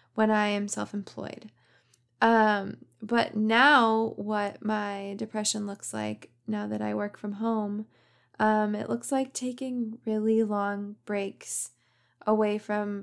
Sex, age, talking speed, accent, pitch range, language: female, 20-39, 125 wpm, American, 195-225 Hz, English